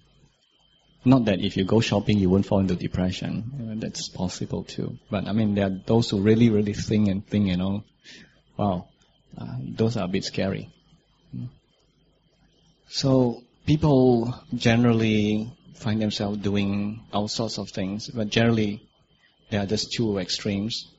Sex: male